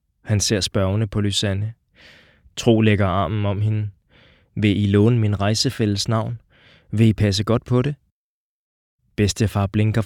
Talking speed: 145 wpm